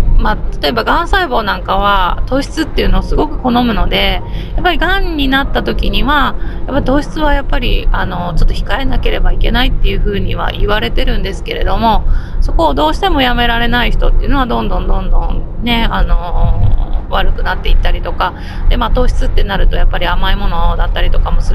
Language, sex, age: Japanese, female, 20-39